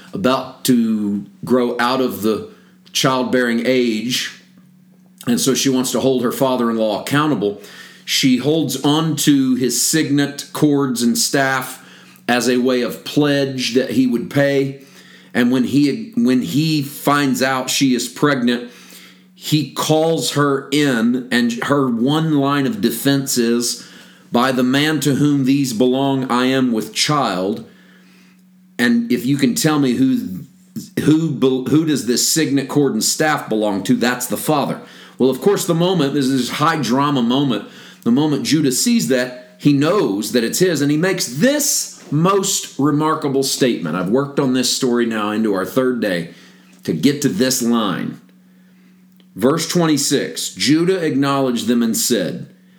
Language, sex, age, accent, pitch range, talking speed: English, male, 40-59, American, 125-160 Hz, 155 wpm